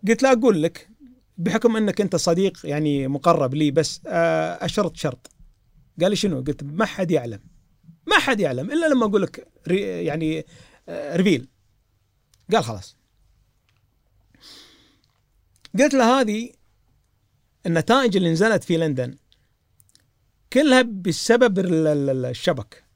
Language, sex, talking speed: Arabic, male, 110 wpm